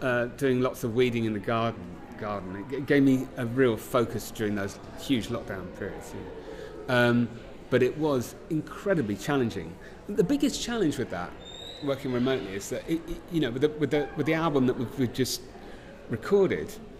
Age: 30-49